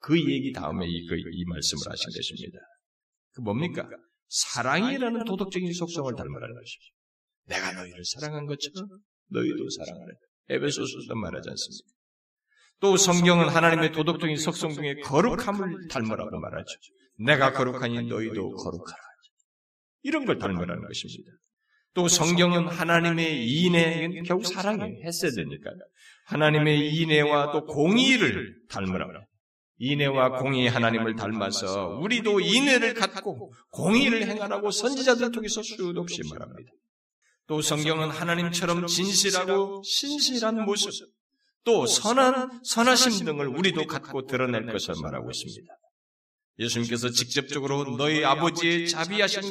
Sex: male